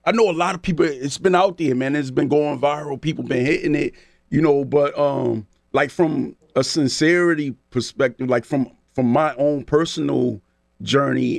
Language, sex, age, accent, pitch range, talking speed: English, male, 30-49, American, 120-170 Hz, 185 wpm